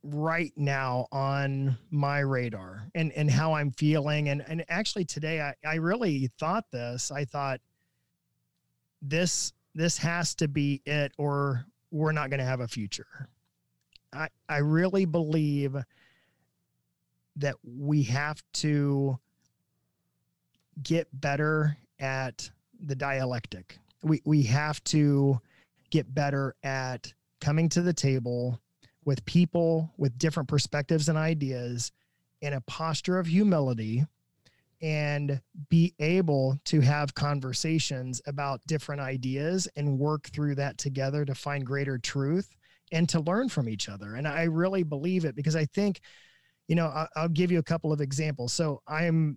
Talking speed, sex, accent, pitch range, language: 140 wpm, male, American, 135-160 Hz, English